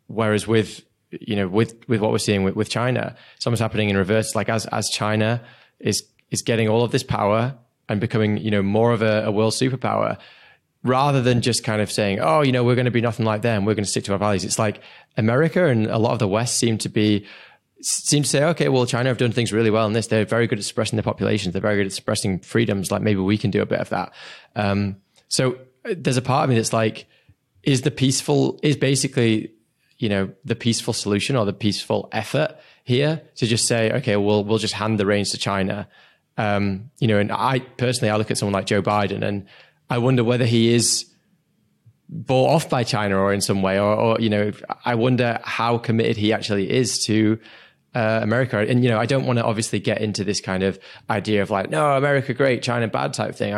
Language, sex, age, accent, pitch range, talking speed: English, male, 20-39, British, 105-125 Hz, 230 wpm